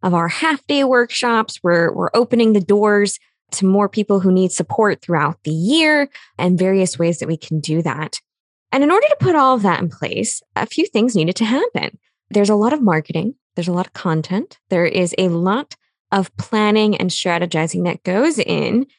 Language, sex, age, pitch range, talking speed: English, female, 20-39, 180-240 Hz, 200 wpm